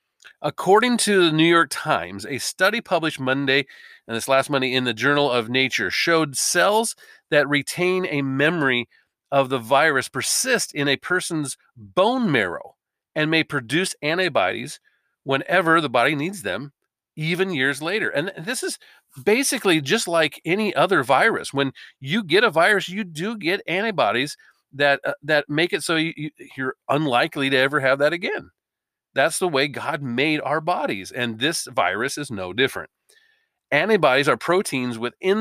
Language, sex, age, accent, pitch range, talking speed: English, male, 40-59, American, 130-170 Hz, 160 wpm